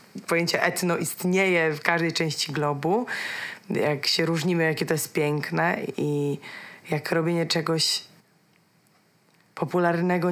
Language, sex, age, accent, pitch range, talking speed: Polish, female, 20-39, native, 165-210 Hz, 110 wpm